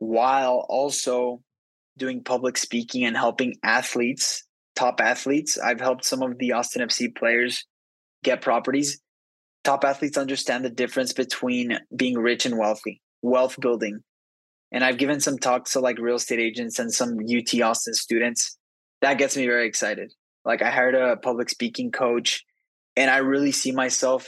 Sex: male